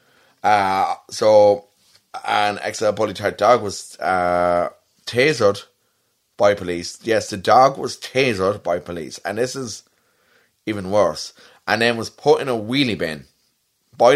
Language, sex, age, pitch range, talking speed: English, male, 30-49, 90-120 Hz, 145 wpm